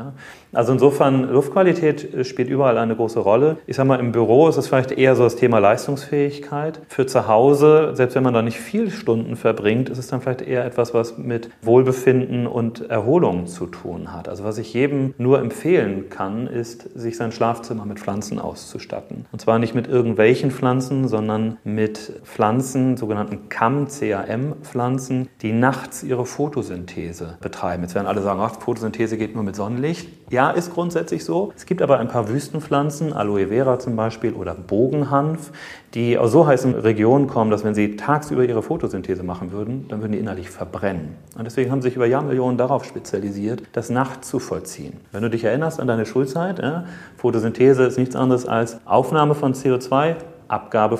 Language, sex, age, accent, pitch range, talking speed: German, male, 40-59, German, 110-135 Hz, 180 wpm